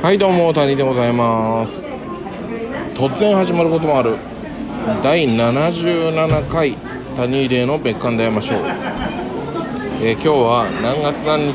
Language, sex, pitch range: Japanese, male, 115-155 Hz